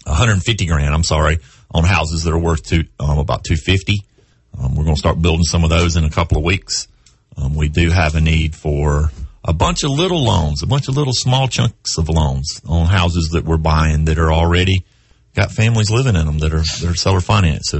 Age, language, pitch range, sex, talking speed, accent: 40-59, English, 80-100 Hz, male, 225 wpm, American